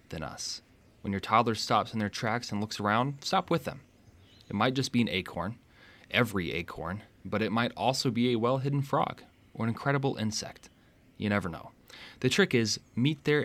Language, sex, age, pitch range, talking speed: English, male, 20-39, 95-120 Hz, 185 wpm